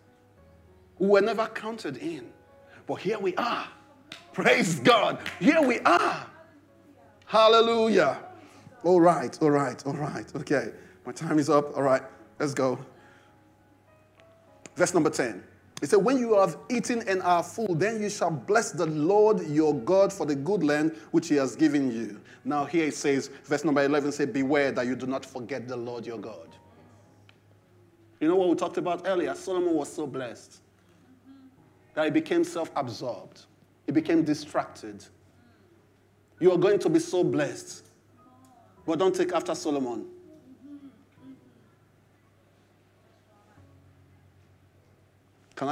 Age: 30-49